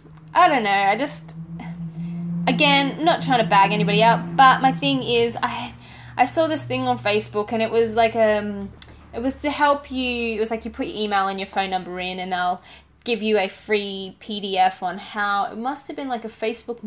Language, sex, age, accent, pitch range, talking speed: English, female, 10-29, Australian, 195-260 Hz, 215 wpm